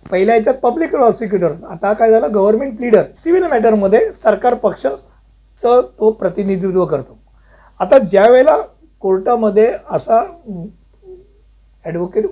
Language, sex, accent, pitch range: Hindi, male, native, 185-225 Hz